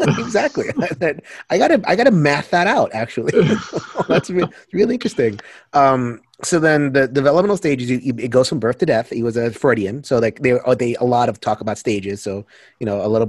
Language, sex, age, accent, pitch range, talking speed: English, male, 30-49, American, 115-140 Hz, 210 wpm